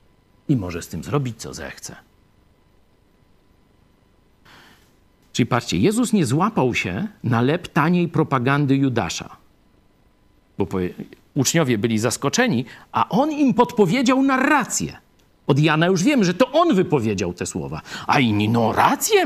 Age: 50-69